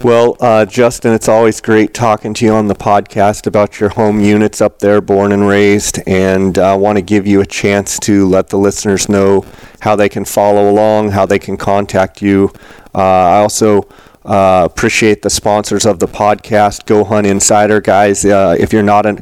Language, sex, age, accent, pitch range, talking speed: English, male, 40-59, American, 100-105 Hz, 195 wpm